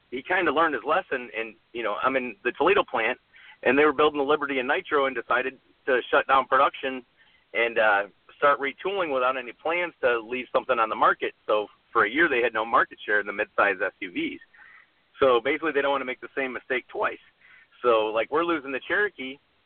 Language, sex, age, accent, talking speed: English, male, 40-59, American, 215 wpm